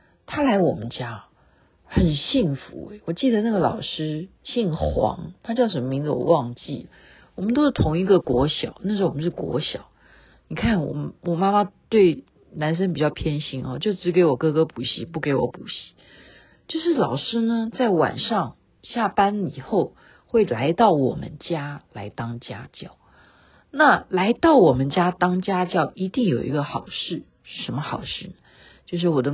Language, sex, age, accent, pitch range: Chinese, female, 50-69, native, 145-230 Hz